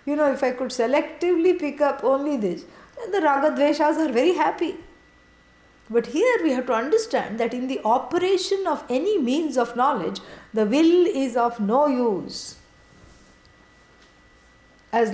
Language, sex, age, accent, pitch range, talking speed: English, female, 50-69, Indian, 235-305 Hz, 150 wpm